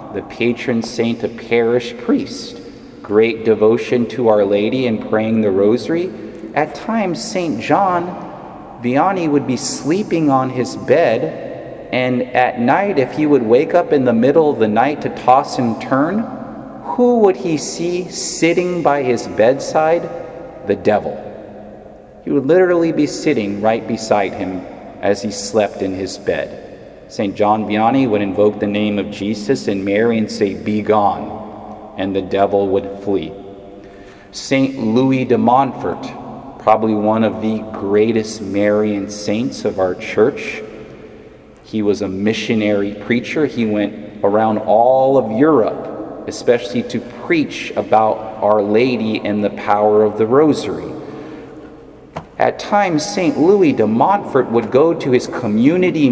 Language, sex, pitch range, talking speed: English, male, 105-145 Hz, 145 wpm